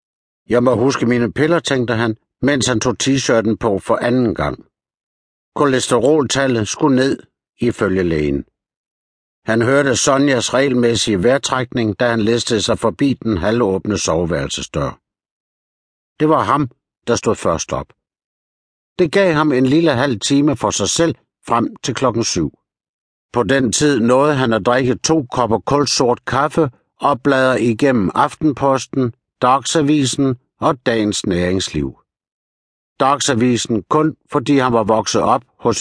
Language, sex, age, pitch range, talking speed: Danish, male, 60-79, 105-140 Hz, 135 wpm